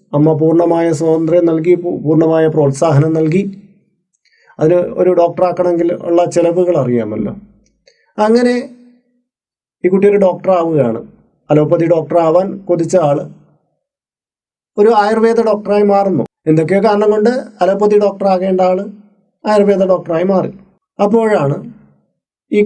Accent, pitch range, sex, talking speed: native, 150-200 Hz, male, 100 wpm